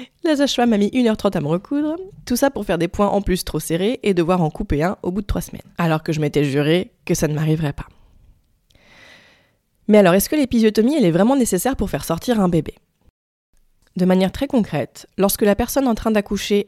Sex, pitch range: female, 155-215 Hz